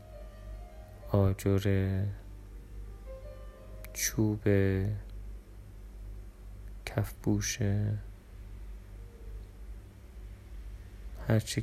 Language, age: Persian, 30-49